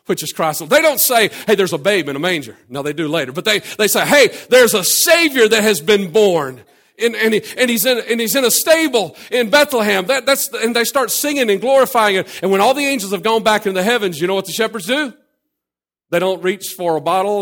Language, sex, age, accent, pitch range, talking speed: English, male, 40-59, American, 185-240 Hz, 255 wpm